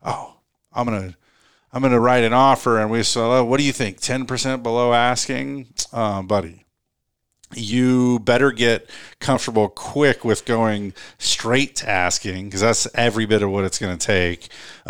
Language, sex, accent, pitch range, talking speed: English, male, American, 100-125 Hz, 175 wpm